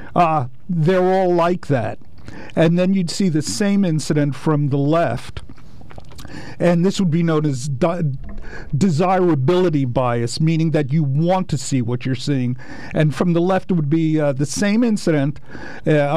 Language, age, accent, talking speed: English, 50-69, American, 165 wpm